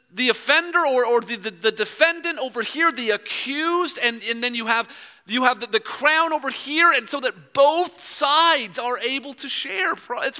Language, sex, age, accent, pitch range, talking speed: English, male, 40-59, American, 245-320 Hz, 195 wpm